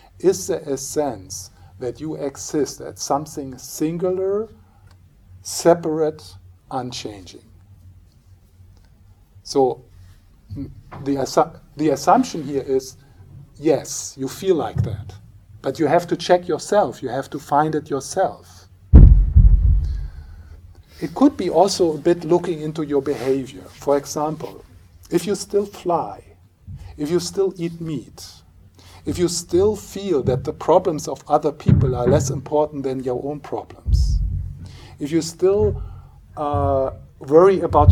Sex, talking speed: male, 125 wpm